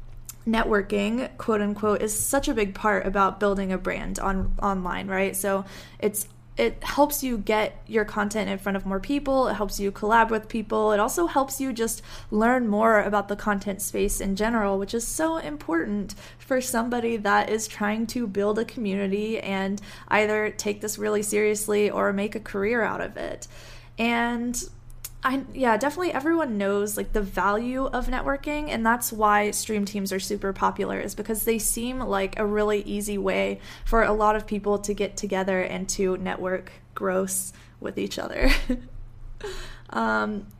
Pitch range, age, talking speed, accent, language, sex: 195-225 Hz, 20-39, 170 wpm, American, English, female